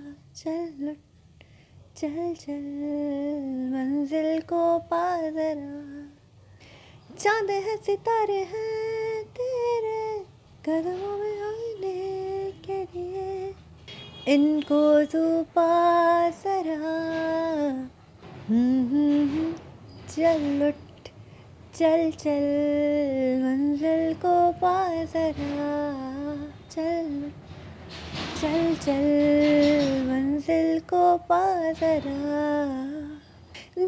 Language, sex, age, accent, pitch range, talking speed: Hindi, female, 20-39, native, 290-370 Hz, 60 wpm